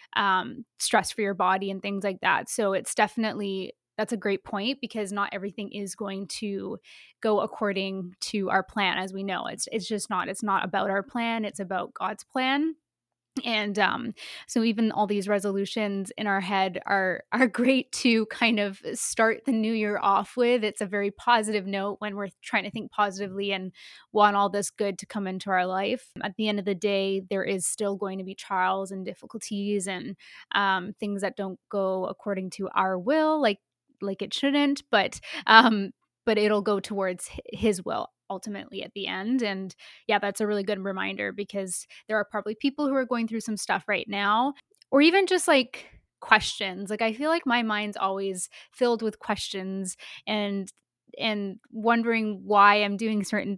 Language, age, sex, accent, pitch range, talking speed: English, 20-39, female, American, 195-225 Hz, 190 wpm